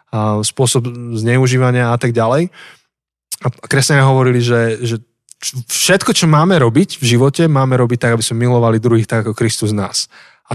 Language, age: Slovak, 20-39